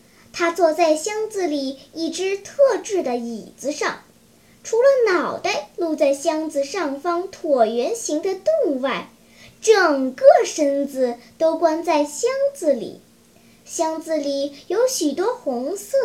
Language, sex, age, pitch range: Chinese, male, 10-29, 285-390 Hz